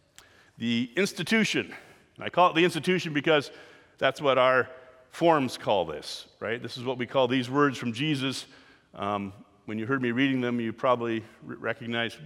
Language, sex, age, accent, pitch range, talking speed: English, male, 50-69, American, 120-175 Hz, 175 wpm